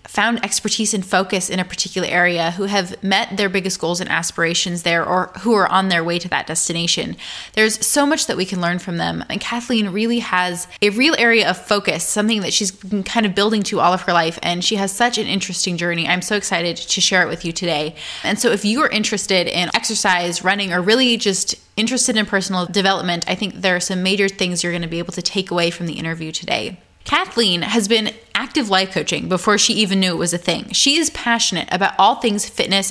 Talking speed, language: 235 wpm, English